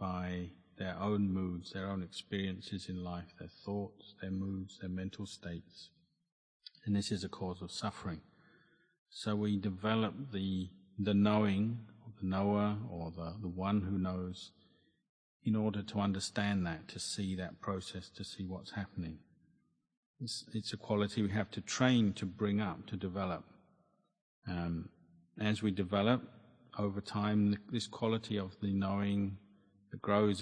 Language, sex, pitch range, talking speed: English, male, 90-105 Hz, 150 wpm